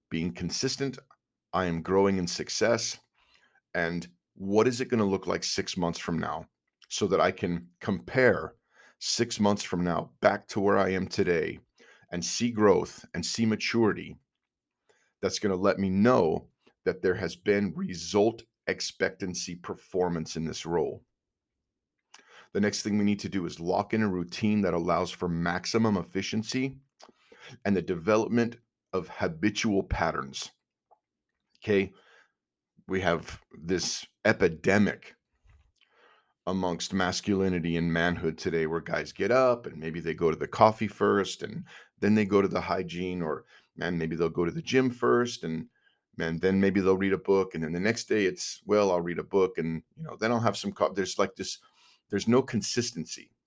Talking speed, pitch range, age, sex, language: 170 wpm, 85-110 Hz, 40-59, male, English